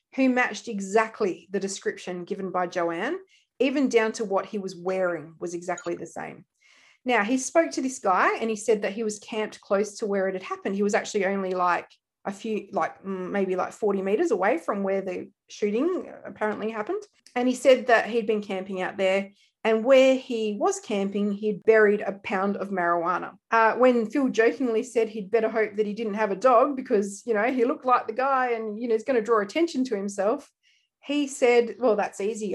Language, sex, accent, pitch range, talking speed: English, female, Australian, 200-250 Hz, 210 wpm